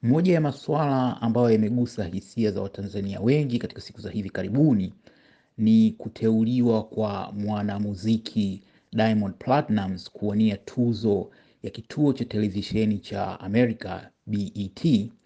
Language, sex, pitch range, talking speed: Swahili, male, 100-120 Hz, 115 wpm